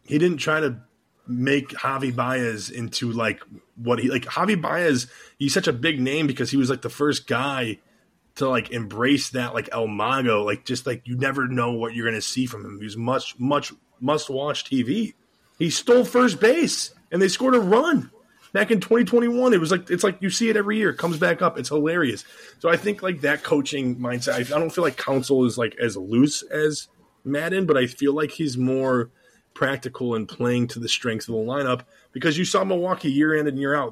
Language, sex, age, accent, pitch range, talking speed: English, male, 20-39, American, 120-160 Hz, 225 wpm